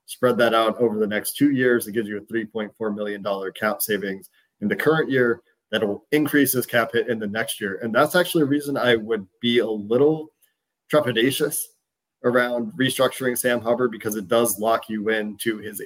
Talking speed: 195 wpm